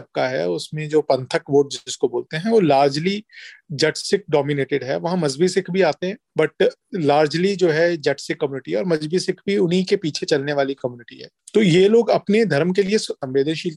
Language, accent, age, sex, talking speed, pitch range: Hindi, native, 40-59, male, 115 wpm, 140-180 Hz